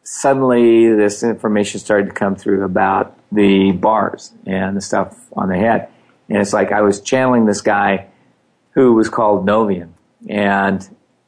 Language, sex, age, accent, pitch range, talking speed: English, male, 50-69, American, 100-115 Hz, 155 wpm